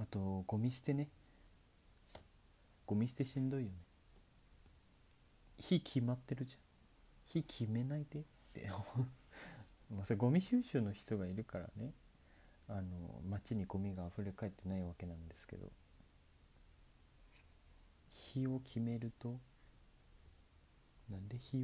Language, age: Japanese, 40-59